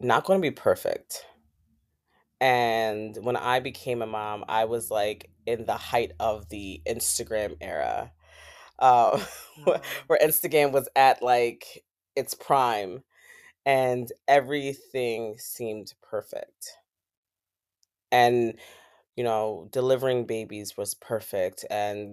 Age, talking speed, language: 20-39, 110 wpm, English